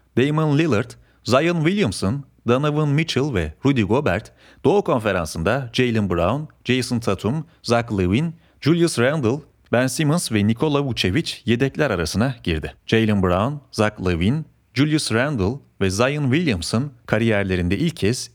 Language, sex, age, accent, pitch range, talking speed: Turkish, male, 40-59, native, 100-140 Hz, 130 wpm